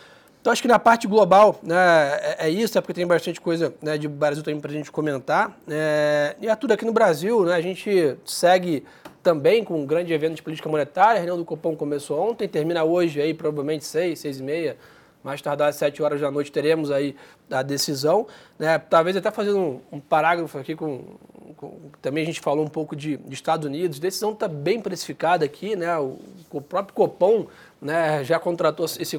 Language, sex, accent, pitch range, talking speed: Portuguese, male, Brazilian, 150-185 Hz, 205 wpm